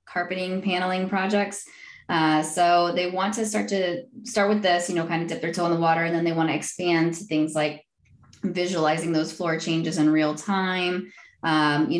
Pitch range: 155-180 Hz